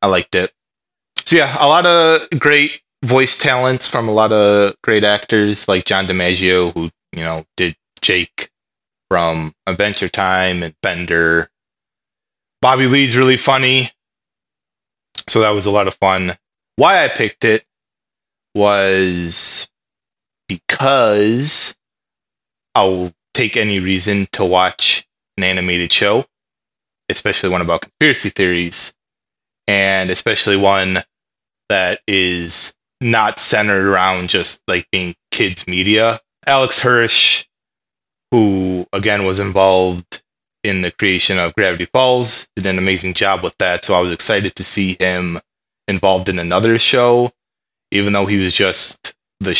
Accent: American